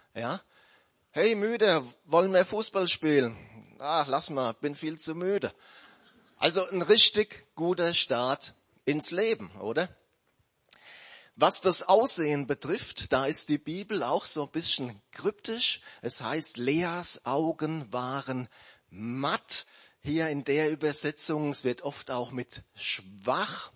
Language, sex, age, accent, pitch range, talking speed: German, male, 30-49, German, 120-155 Hz, 130 wpm